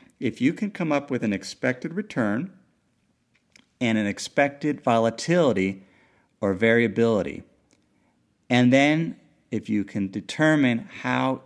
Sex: male